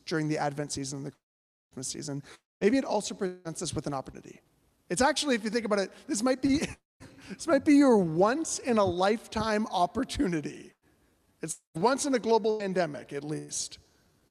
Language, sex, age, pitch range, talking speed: English, male, 40-59, 145-210 Hz, 150 wpm